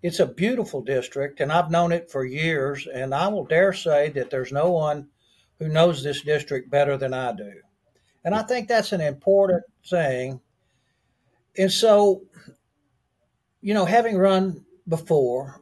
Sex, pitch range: male, 140-190 Hz